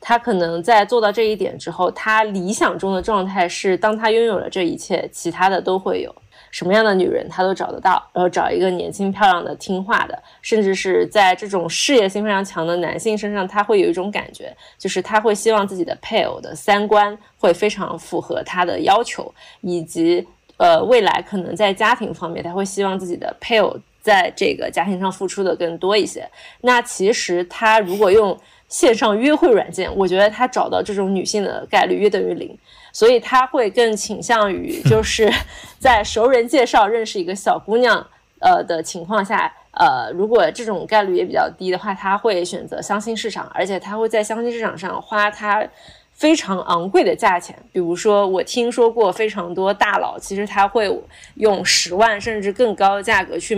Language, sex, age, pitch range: Chinese, female, 20-39, 185-230 Hz